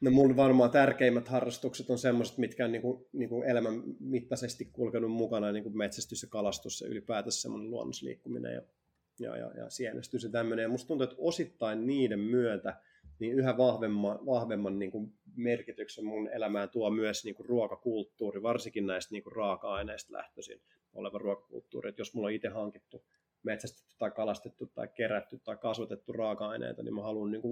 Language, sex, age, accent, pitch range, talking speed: Finnish, male, 30-49, native, 105-125 Hz, 155 wpm